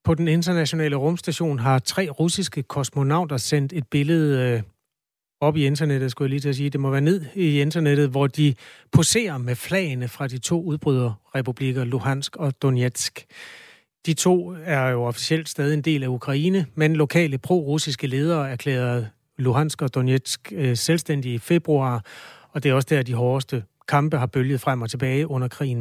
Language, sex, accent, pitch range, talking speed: Danish, male, native, 130-155 Hz, 170 wpm